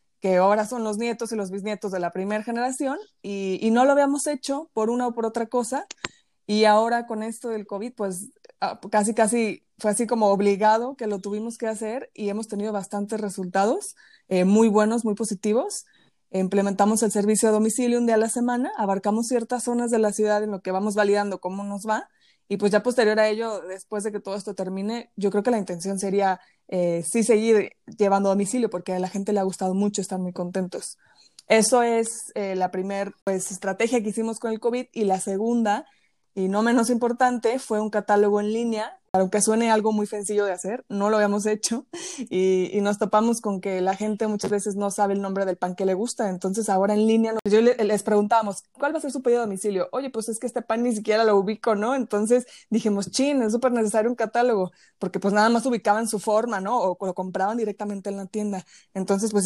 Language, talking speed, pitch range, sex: Spanish, 220 wpm, 195-230 Hz, female